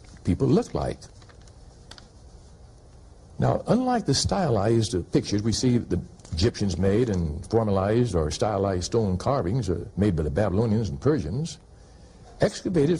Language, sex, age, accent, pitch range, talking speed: English, male, 60-79, American, 100-160 Hz, 135 wpm